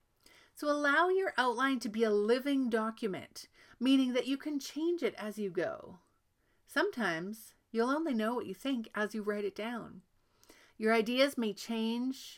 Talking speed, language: 165 wpm, English